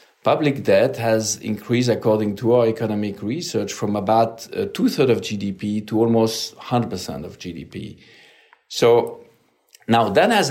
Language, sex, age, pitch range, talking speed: English, male, 50-69, 105-125 Hz, 130 wpm